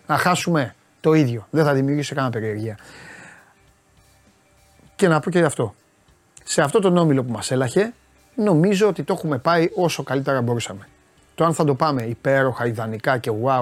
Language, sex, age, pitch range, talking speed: Greek, male, 30-49, 135-175 Hz, 165 wpm